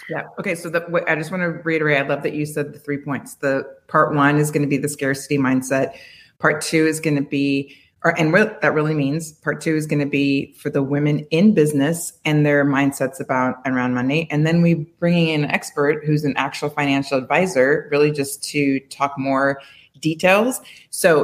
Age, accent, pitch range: 30-49, American, 140-165 Hz